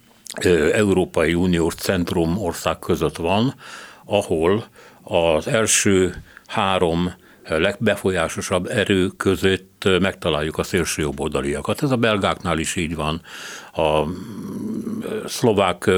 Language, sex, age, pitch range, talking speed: Hungarian, male, 60-79, 80-100 Hz, 90 wpm